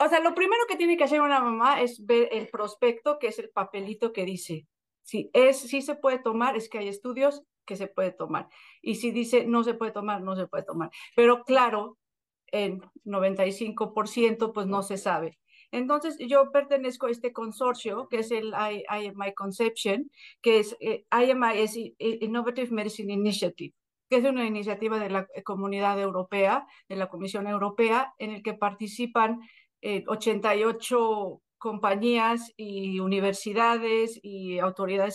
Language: Spanish